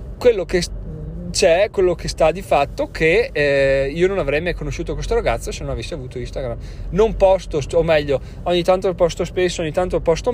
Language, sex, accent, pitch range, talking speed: Italian, male, native, 130-180 Hz, 190 wpm